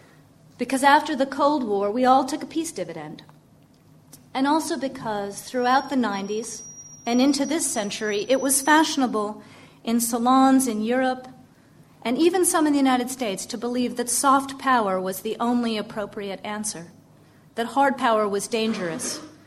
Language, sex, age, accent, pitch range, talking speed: English, female, 40-59, American, 200-260 Hz, 155 wpm